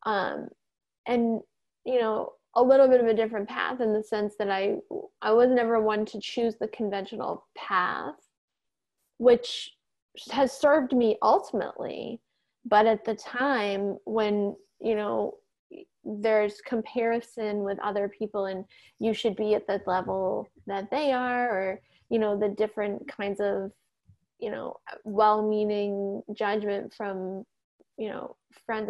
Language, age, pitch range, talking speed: English, 10-29, 210-255 Hz, 140 wpm